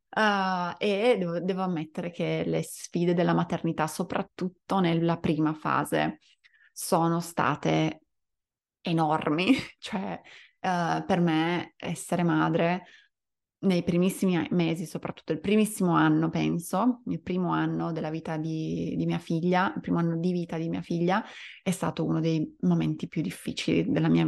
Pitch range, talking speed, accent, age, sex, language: 165-210 Hz, 135 wpm, native, 20-39, female, Italian